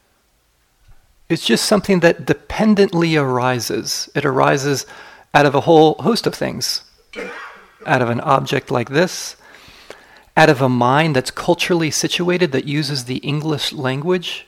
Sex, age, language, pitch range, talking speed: male, 40-59, English, 140-190 Hz, 135 wpm